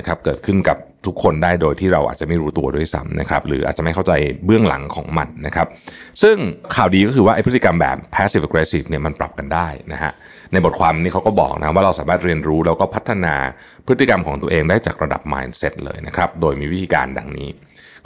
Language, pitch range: Thai, 80-105 Hz